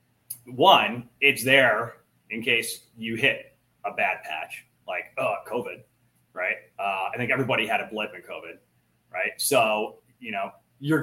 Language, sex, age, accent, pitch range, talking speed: English, male, 30-49, American, 110-140 Hz, 150 wpm